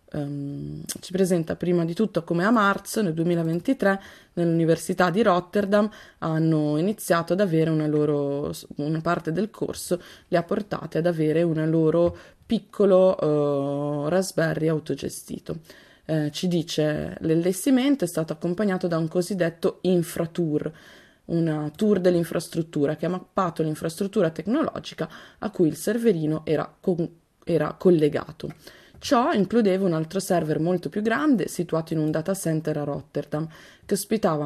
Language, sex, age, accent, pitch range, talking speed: Italian, female, 20-39, native, 155-195 Hz, 140 wpm